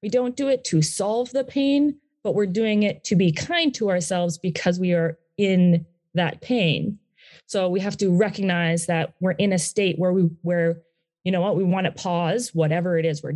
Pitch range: 170-210 Hz